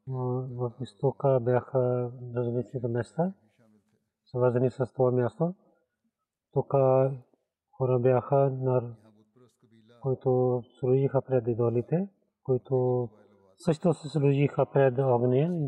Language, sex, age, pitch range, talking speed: Bulgarian, male, 30-49, 120-135 Hz, 95 wpm